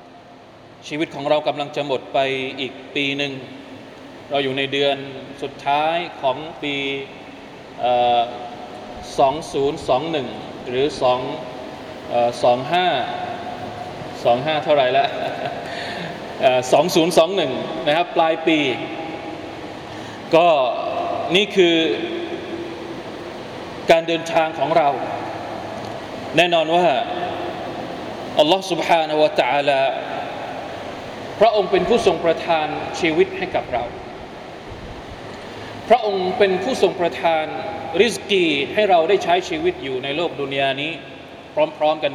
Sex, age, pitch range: male, 20-39, 140-190 Hz